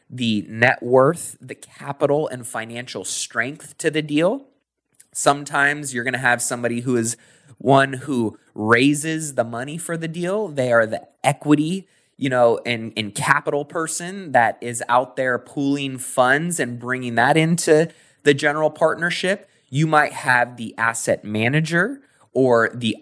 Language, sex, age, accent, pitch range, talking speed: English, male, 20-39, American, 115-150 Hz, 150 wpm